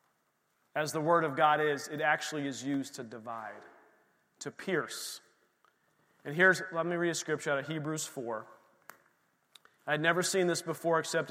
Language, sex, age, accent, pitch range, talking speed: English, male, 40-59, American, 155-235 Hz, 165 wpm